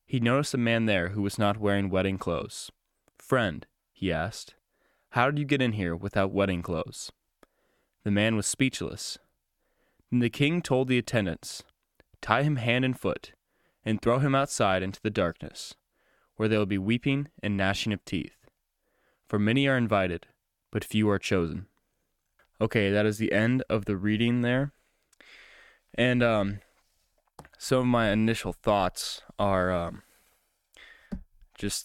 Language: English